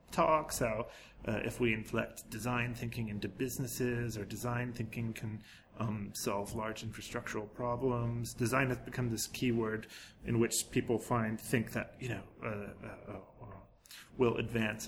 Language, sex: Chinese, male